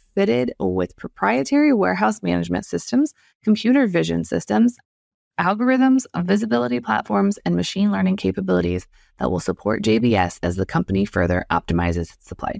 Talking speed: 130 wpm